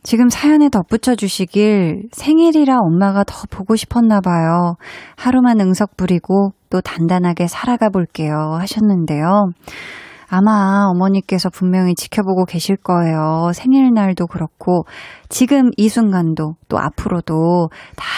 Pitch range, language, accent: 175-230 Hz, Korean, native